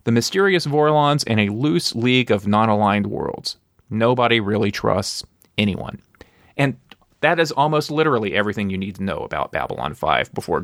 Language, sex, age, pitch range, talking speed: English, male, 30-49, 105-140 Hz, 160 wpm